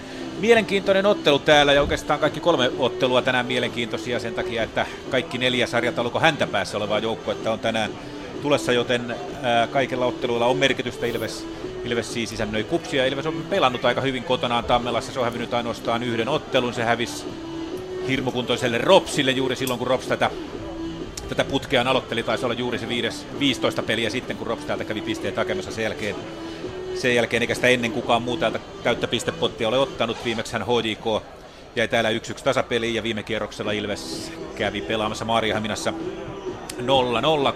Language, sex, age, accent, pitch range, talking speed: Finnish, male, 30-49, native, 115-135 Hz, 160 wpm